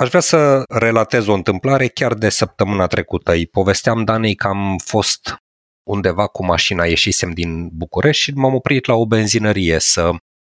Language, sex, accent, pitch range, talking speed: Romanian, male, native, 95-135 Hz, 165 wpm